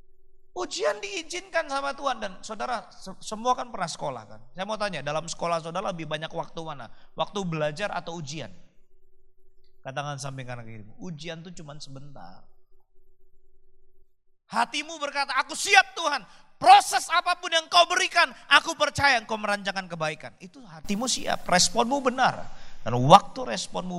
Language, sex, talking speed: Indonesian, male, 135 wpm